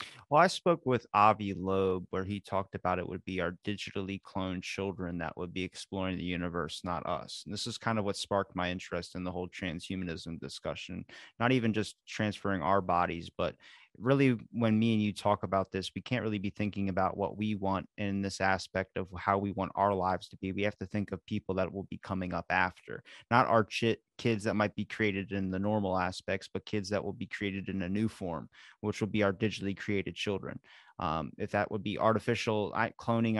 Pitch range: 95-110 Hz